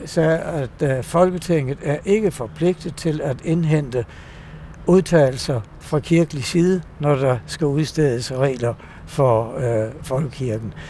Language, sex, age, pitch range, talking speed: Danish, male, 60-79, 130-165 Hz, 115 wpm